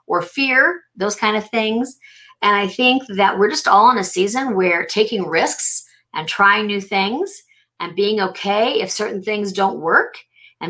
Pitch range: 180-240 Hz